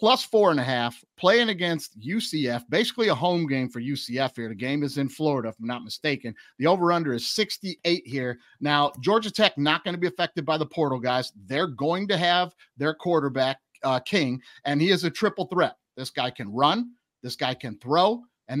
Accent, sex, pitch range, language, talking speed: American, male, 130-175 Hz, English, 205 wpm